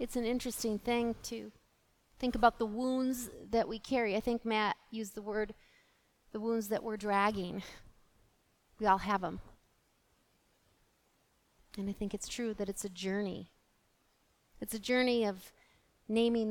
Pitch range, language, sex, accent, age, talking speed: 205-240 Hz, English, female, American, 30-49, 150 wpm